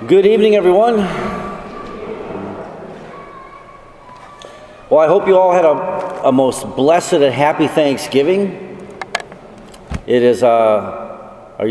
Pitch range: 125-175 Hz